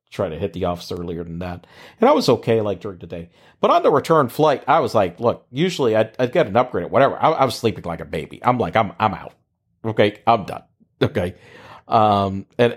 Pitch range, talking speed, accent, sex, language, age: 110-180 Hz, 235 wpm, American, male, English, 40-59